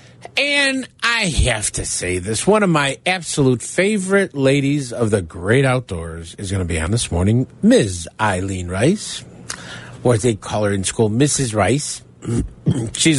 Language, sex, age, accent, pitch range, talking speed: English, male, 50-69, American, 100-155 Hz, 160 wpm